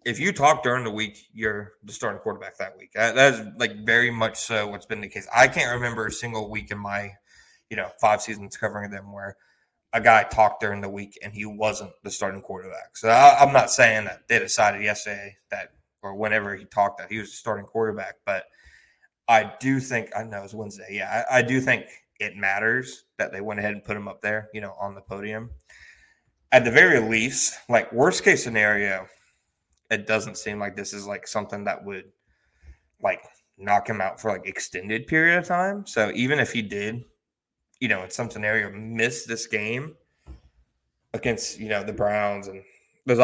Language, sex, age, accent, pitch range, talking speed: English, male, 20-39, American, 100-120 Hz, 205 wpm